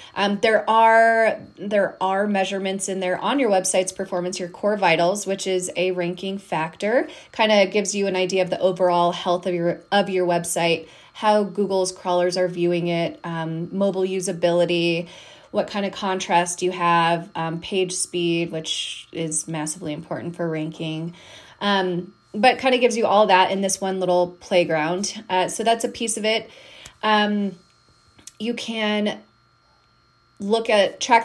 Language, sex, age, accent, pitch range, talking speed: English, female, 20-39, American, 175-210 Hz, 165 wpm